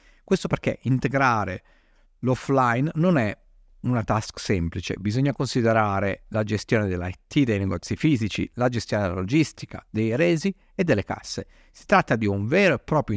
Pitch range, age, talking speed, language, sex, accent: 105-140 Hz, 50-69, 150 wpm, Italian, male, native